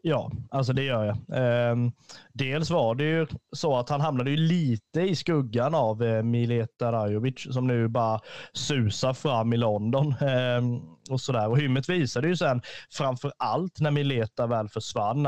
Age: 30-49